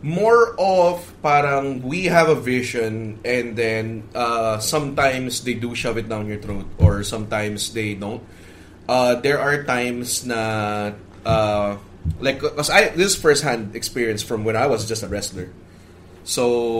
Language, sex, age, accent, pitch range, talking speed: English, male, 20-39, Filipino, 100-120 Hz, 150 wpm